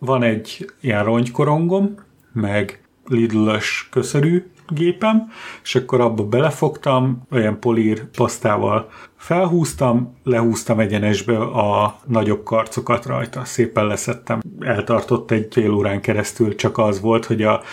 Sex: male